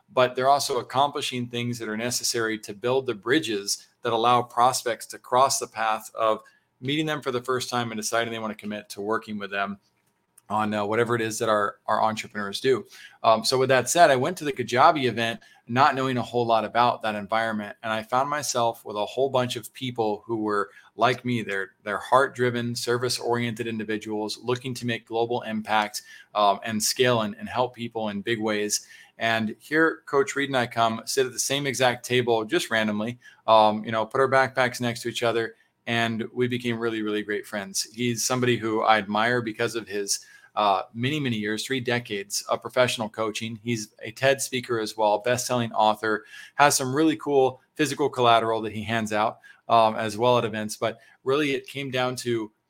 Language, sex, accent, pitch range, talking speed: English, male, American, 110-125 Hz, 205 wpm